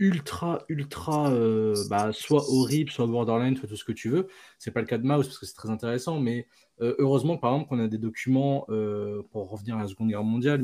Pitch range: 110-140 Hz